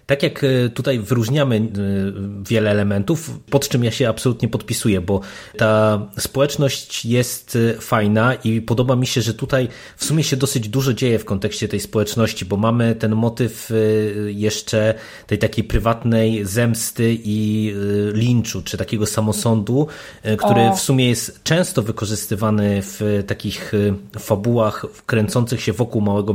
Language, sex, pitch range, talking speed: Polish, male, 105-125 Hz, 135 wpm